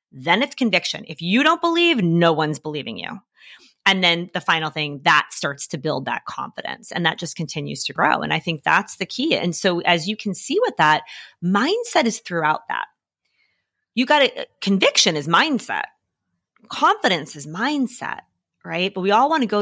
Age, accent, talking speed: 30-49, American, 190 wpm